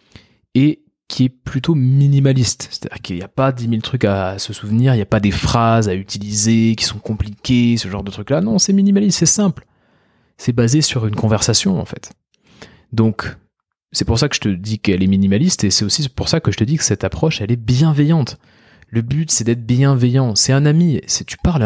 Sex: male